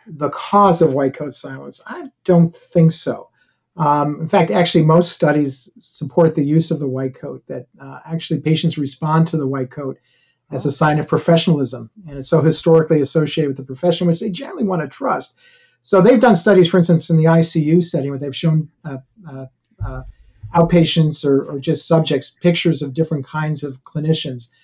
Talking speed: 190 wpm